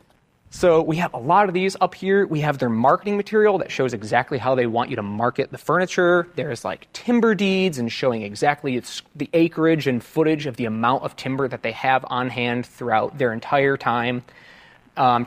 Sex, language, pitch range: male, English, 125-165 Hz